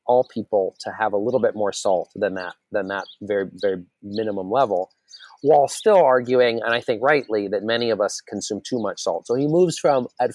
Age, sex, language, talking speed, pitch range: 30-49, male, English, 215 wpm, 100-125 Hz